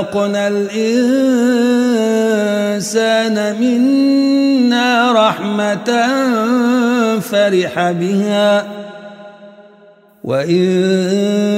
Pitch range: 205-270 Hz